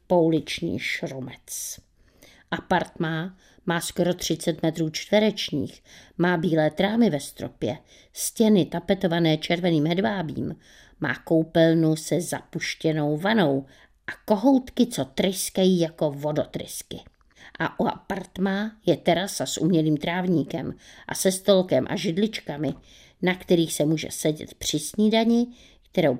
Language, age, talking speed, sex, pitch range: Czech, 50-69, 110 wpm, female, 160-210 Hz